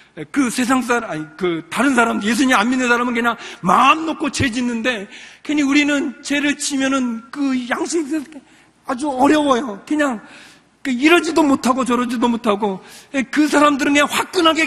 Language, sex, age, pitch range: Korean, male, 40-59, 230-315 Hz